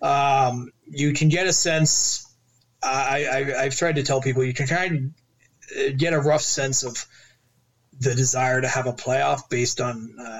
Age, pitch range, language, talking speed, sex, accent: 20-39, 115-135 Hz, English, 180 wpm, male, American